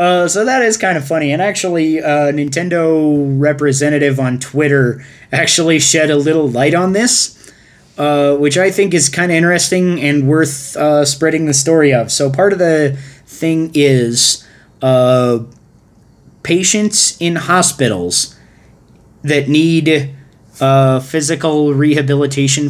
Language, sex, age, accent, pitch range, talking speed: English, male, 20-39, American, 130-150 Hz, 135 wpm